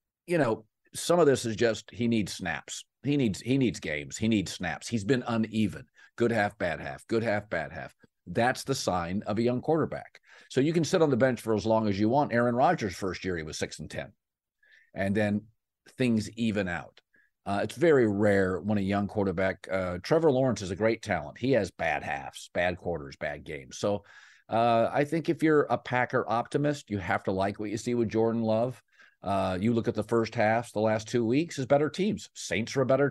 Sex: male